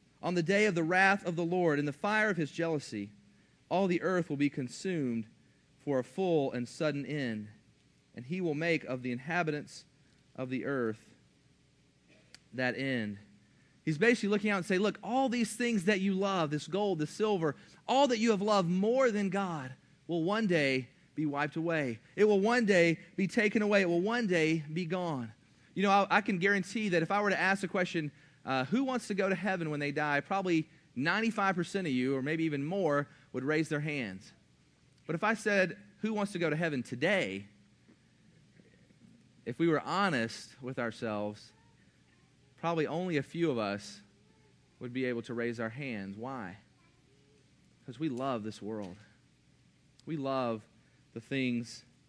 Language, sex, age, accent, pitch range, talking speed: English, male, 40-59, American, 130-190 Hz, 185 wpm